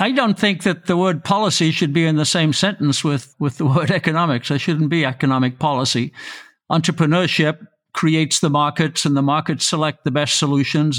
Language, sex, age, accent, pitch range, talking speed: English, male, 60-79, American, 145-180 Hz, 185 wpm